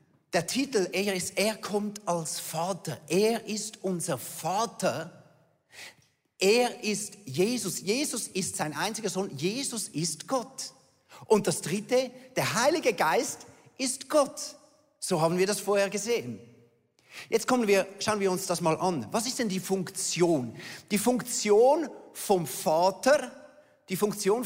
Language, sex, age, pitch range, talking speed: German, male, 40-59, 145-205 Hz, 140 wpm